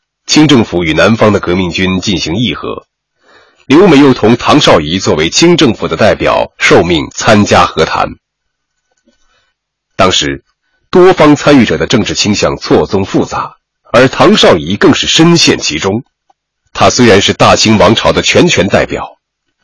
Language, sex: Chinese, male